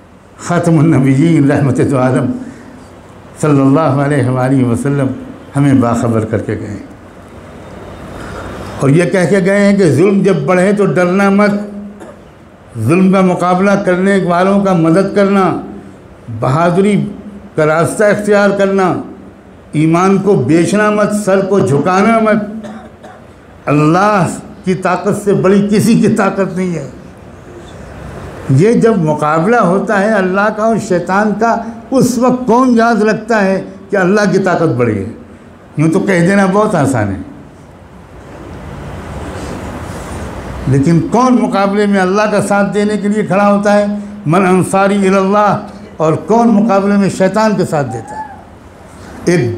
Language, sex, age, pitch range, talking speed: Urdu, male, 60-79, 140-205 Hz, 140 wpm